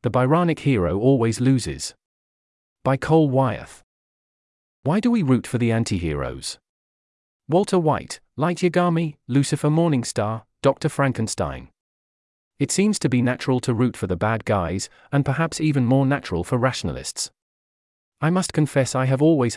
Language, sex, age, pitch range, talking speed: English, male, 40-59, 105-145 Hz, 145 wpm